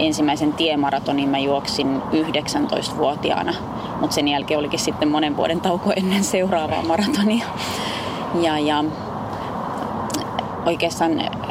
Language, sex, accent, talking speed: Finnish, female, native, 100 wpm